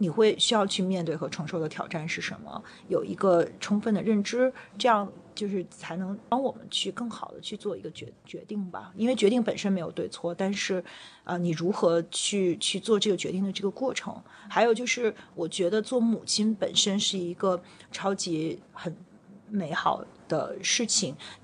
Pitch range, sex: 180-215 Hz, female